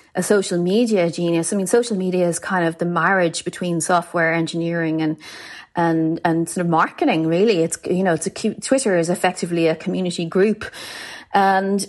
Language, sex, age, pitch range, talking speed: English, female, 30-49, 170-215 Hz, 180 wpm